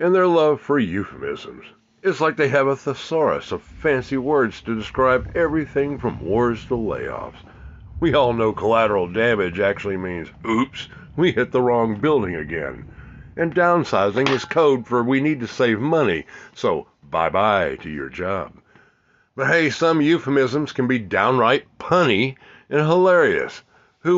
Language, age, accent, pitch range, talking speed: English, 60-79, American, 115-150 Hz, 150 wpm